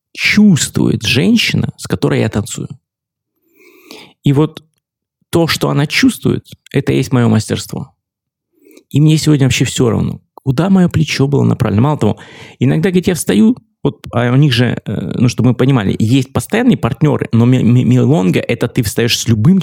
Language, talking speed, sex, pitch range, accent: Russian, 160 wpm, male, 115-160 Hz, native